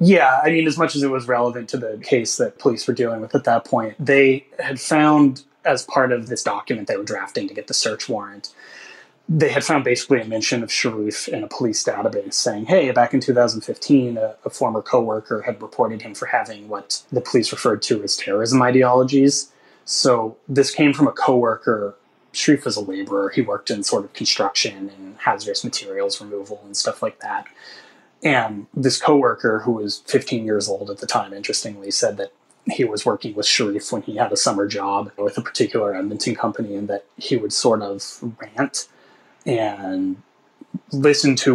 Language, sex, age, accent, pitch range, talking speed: English, male, 30-49, American, 110-140 Hz, 195 wpm